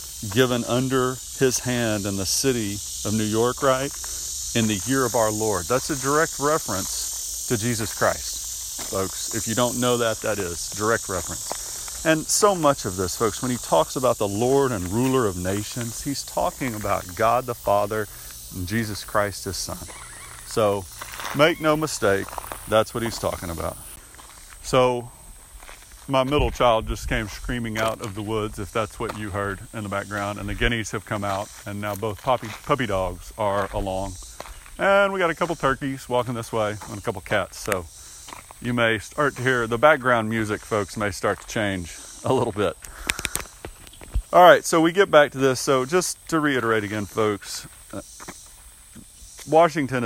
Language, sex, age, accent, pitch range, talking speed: English, male, 40-59, American, 100-130 Hz, 175 wpm